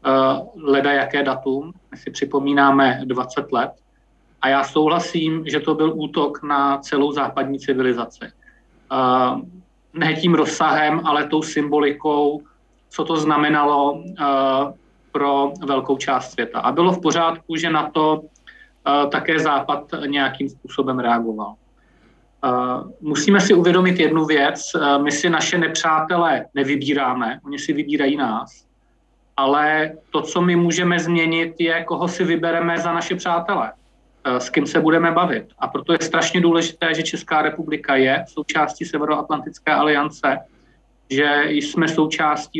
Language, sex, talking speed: Czech, male, 130 wpm